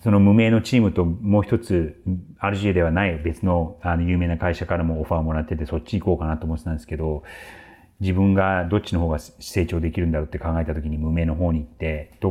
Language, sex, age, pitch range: Japanese, male, 40-59, 80-100 Hz